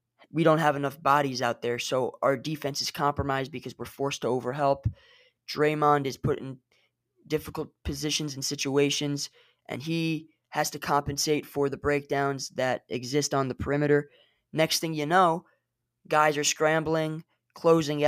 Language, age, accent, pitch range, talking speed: English, 20-39, American, 135-165 Hz, 155 wpm